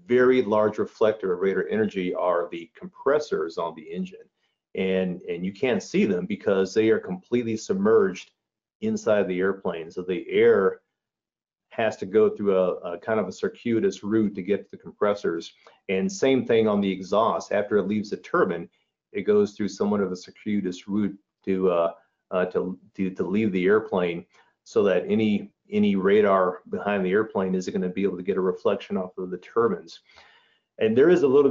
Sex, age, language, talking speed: male, 40-59, English, 190 wpm